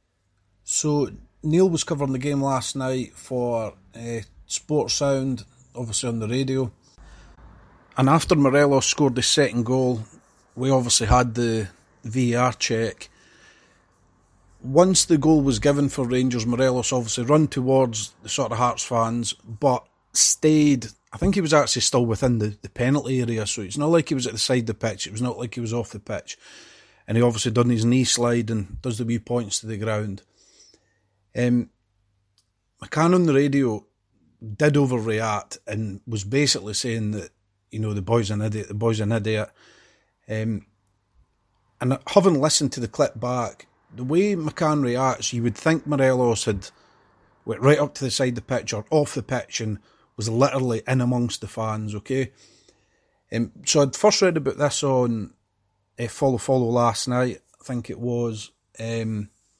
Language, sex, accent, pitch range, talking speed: English, male, British, 105-130 Hz, 175 wpm